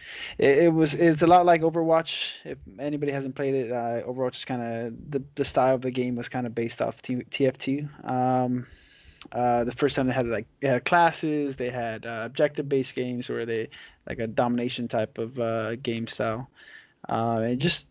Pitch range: 115-140 Hz